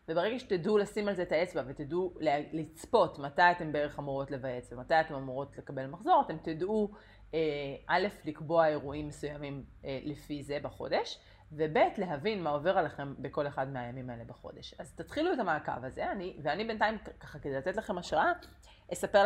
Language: Hebrew